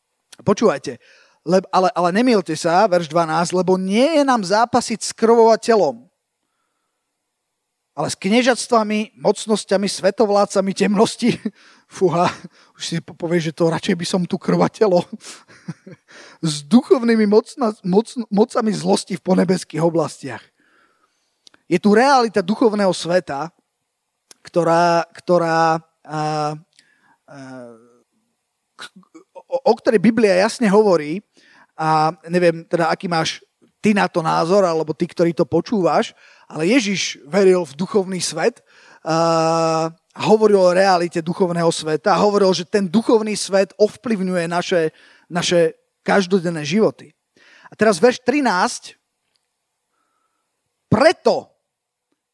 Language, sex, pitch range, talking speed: Slovak, male, 170-225 Hz, 110 wpm